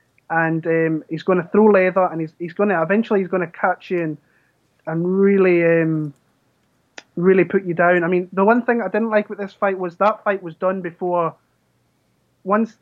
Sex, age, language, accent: male, 20-39, English, British